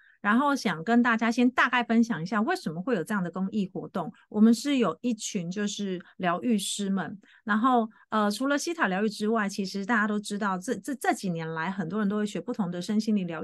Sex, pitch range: female, 185-235 Hz